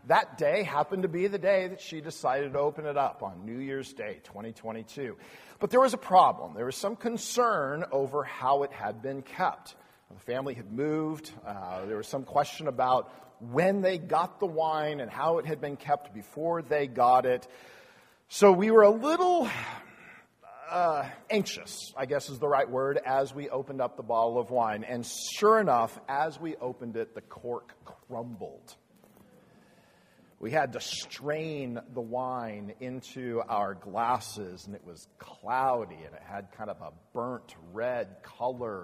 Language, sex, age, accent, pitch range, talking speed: English, male, 50-69, American, 120-170 Hz, 175 wpm